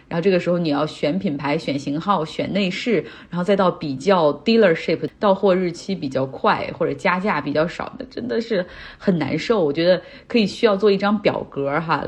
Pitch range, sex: 155-200 Hz, female